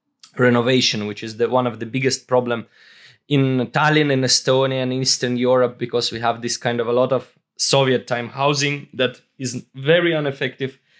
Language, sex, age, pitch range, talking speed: English, male, 20-39, 125-140 Hz, 175 wpm